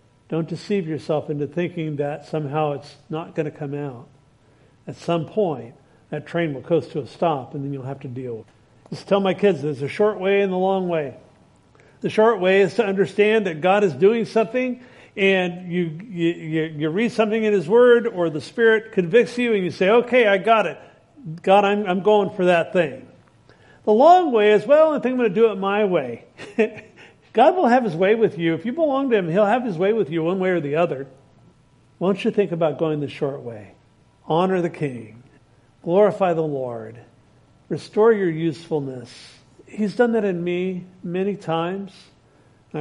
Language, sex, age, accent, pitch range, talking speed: English, male, 50-69, American, 145-200 Hz, 200 wpm